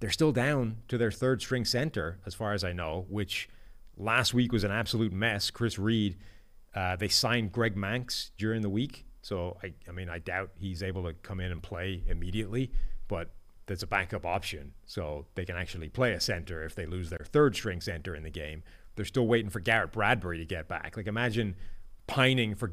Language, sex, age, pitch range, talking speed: English, male, 30-49, 90-115 Hz, 205 wpm